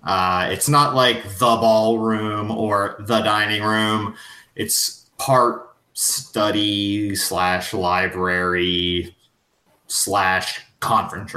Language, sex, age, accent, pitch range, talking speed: English, male, 30-49, American, 95-120 Hz, 90 wpm